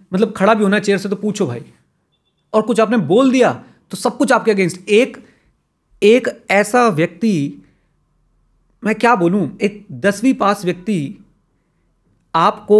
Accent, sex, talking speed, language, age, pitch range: native, male, 145 wpm, Hindi, 30-49, 135-190 Hz